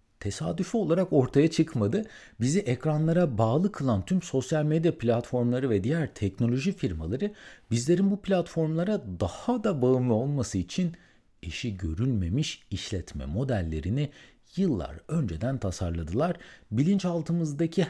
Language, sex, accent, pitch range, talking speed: Turkish, male, native, 110-170 Hz, 105 wpm